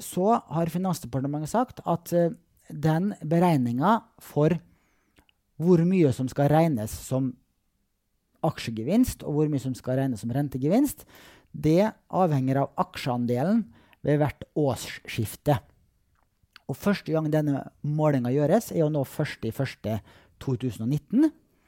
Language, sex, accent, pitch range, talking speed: English, male, Norwegian, 125-170 Hz, 110 wpm